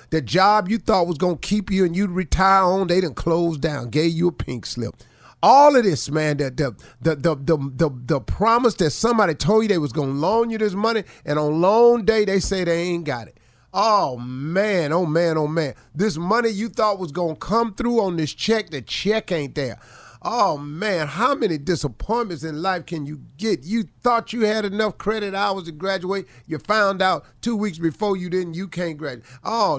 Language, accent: English, American